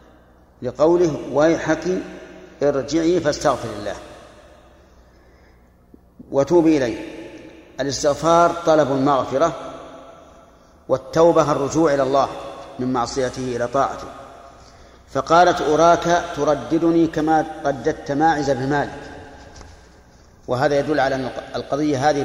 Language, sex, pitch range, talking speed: Arabic, male, 130-150 Hz, 80 wpm